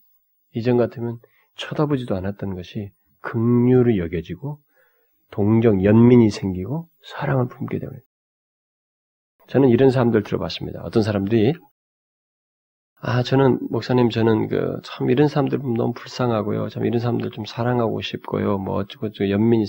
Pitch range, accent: 95-125 Hz, native